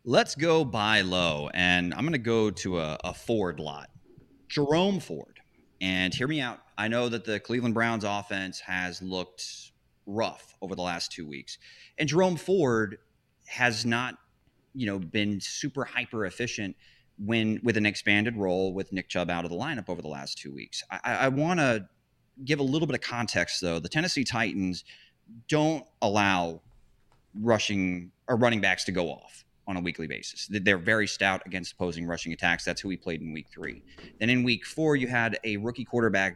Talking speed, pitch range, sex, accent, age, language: 185 wpm, 90-125 Hz, male, American, 30-49, English